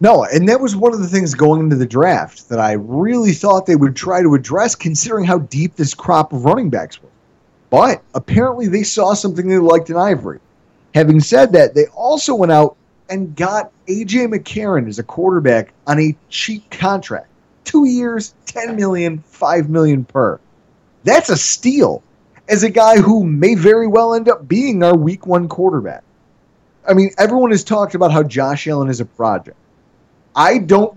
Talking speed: 185 wpm